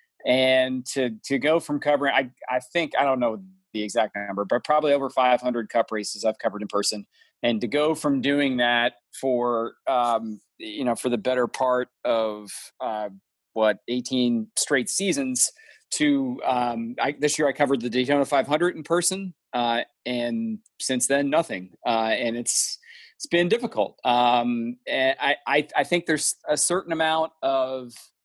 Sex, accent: male, American